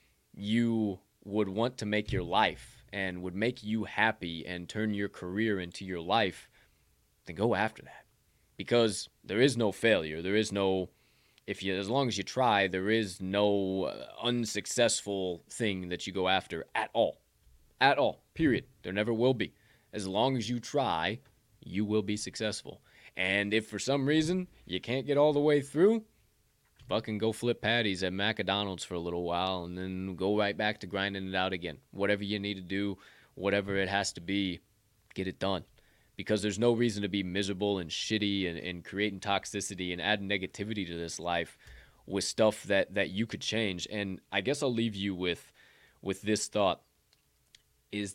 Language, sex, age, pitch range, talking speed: English, male, 20-39, 95-110 Hz, 185 wpm